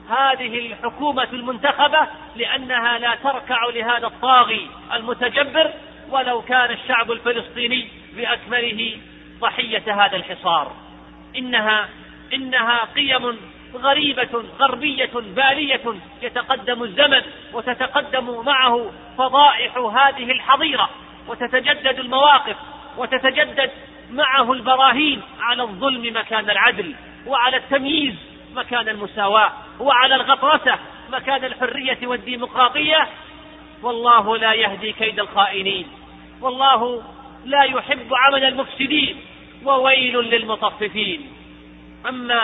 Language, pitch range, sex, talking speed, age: Arabic, 235-275 Hz, male, 85 wpm, 40-59